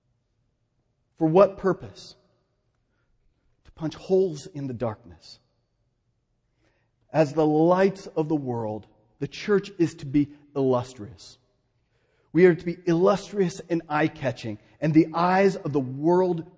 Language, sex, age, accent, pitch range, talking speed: English, male, 40-59, American, 140-210 Hz, 125 wpm